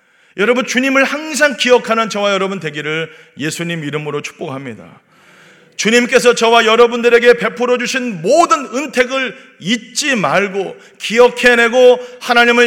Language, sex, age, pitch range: Korean, male, 40-59, 200-260 Hz